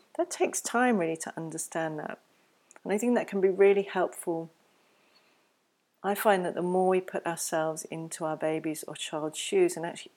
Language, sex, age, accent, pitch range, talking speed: English, female, 40-59, British, 160-185 Hz, 185 wpm